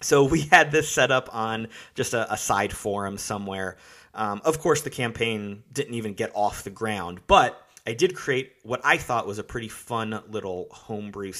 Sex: male